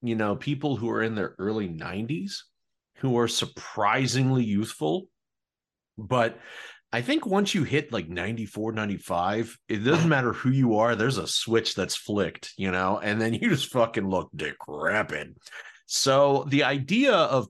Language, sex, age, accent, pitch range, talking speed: English, male, 40-59, American, 100-140 Hz, 160 wpm